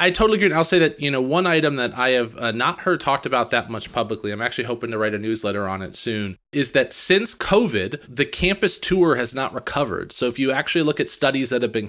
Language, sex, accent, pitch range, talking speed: English, male, American, 115-145 Hz, 260 wpm